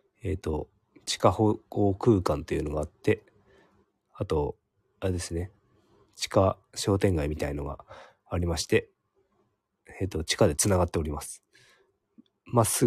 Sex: male